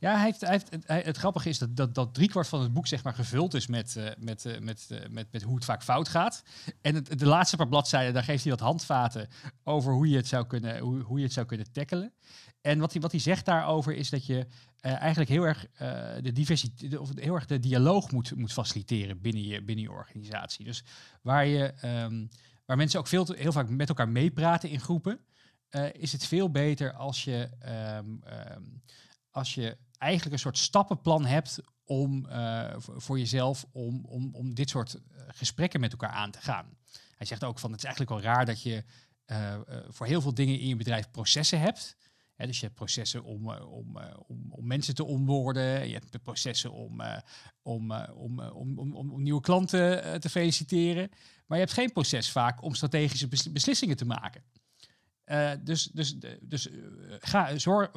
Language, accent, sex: Dutch, Dutch, male